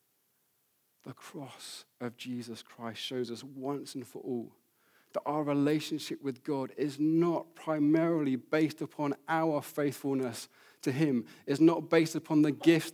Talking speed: 145 wpm